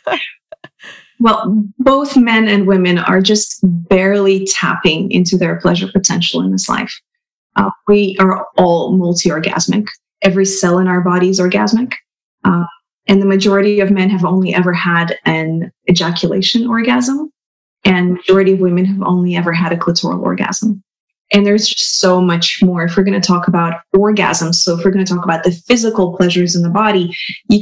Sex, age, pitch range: female, 20-39, 180-215 Hz